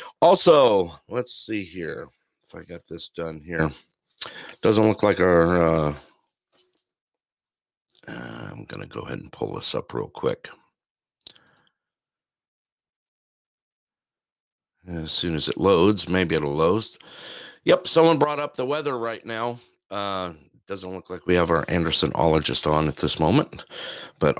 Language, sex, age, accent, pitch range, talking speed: English, male, 50-69, American, 80-105 Hz, 135 wpm